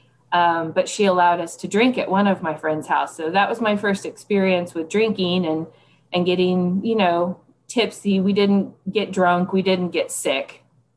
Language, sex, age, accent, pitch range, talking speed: English, female, 20-39, American, 155-190 Hz, 190 wpm